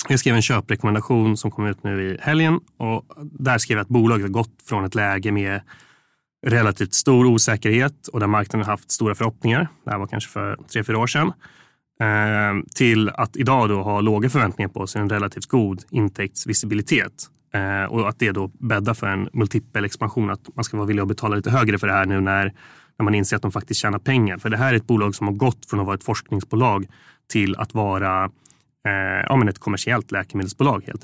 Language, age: Swedish, 20-39